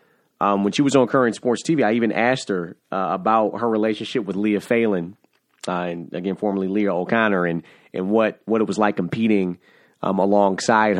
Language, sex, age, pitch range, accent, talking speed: English, male, 30-49, 95-115 Hz, American, 190 wpm